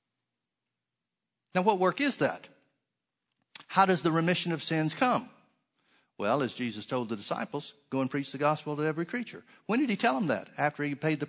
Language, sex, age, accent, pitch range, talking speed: English, male, 50-69, American, 130-175 Hz, 190 wpm